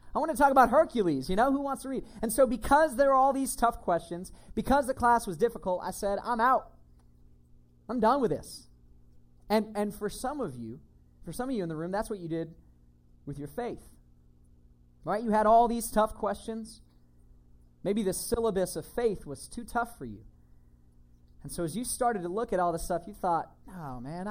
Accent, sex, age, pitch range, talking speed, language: American, male, 30-49, 130-215 Hz, 210 wpm, English